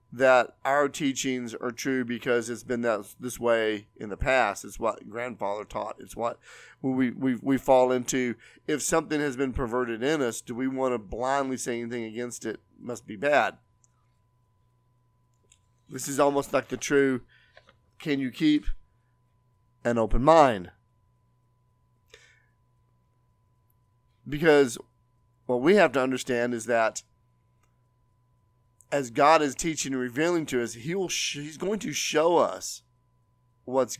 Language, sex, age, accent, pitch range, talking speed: English, male, 40-59, American, 120-140 Hz, 145 wpm